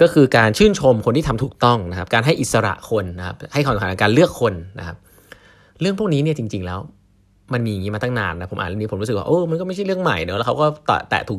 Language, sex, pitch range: Thai, male, 95-130 Hz